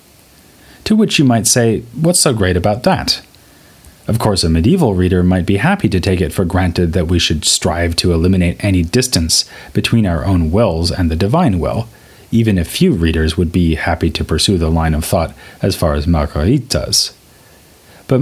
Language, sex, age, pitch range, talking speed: English, male, 30-49, 85-115 Hz, 190 wpm